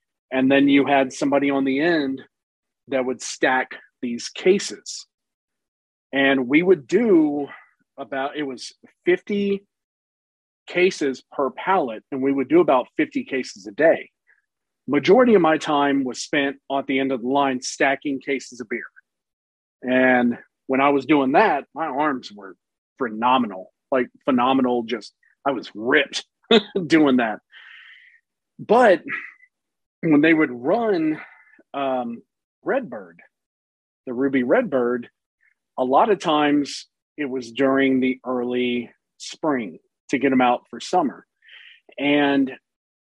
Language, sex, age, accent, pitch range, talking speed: English, male, 40-59, American, 130-180 Hz, 130 wpm